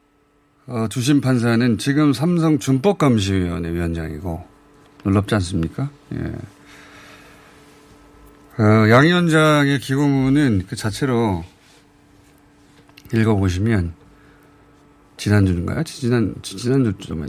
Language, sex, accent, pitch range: Korean, male, native, 100-145 Hz